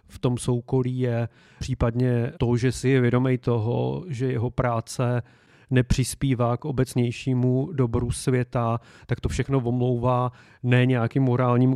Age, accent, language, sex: 30-49, native, Czech, male